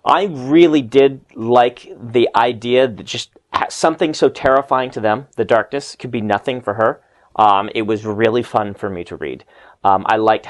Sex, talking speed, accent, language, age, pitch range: male, 185 wpm, American, English, 30-49, 110-150 Hz